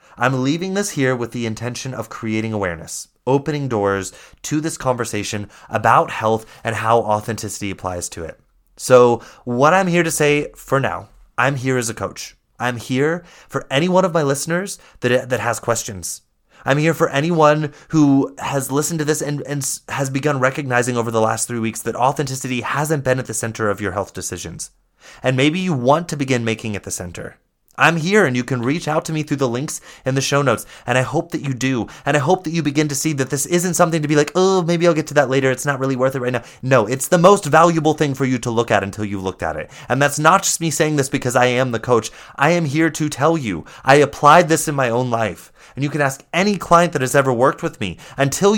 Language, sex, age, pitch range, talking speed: English, male, 30-49, 120-160 Hz, 240 wpm